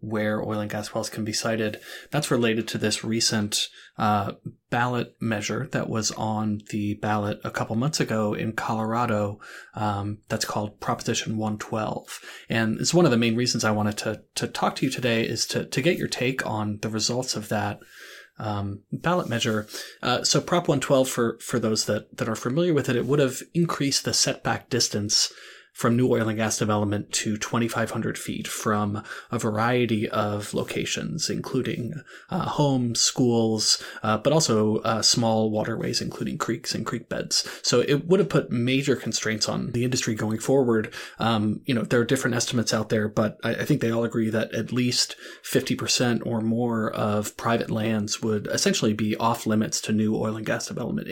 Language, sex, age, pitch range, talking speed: English, male, 30-49, 110-120 Hz, 185 wpm